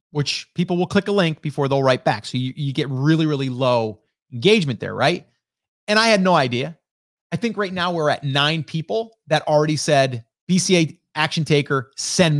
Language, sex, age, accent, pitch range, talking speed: English, male, 30-49, American, 130-175 Hz, 195 wpm